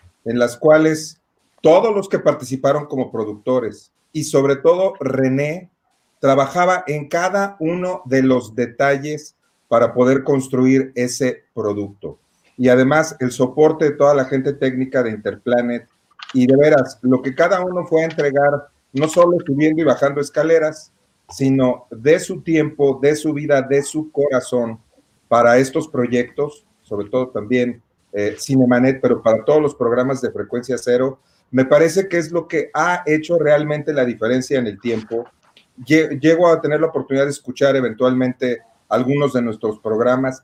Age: 40-59